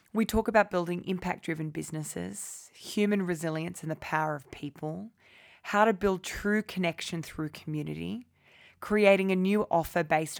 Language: English